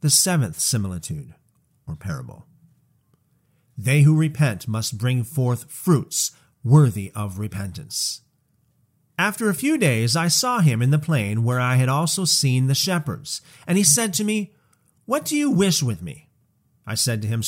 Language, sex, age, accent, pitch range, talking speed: English, male, 40-59, American, 130-170 Hz, 160 wpm